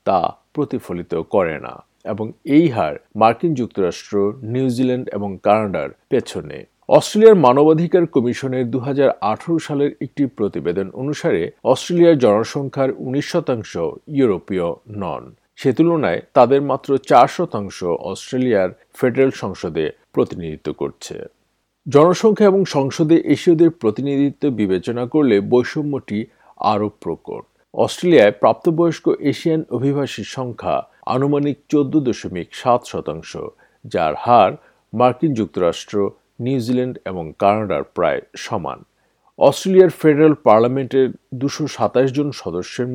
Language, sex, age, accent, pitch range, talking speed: Bengali, male, 50-69, native, 110-150 Hz, 90 wpm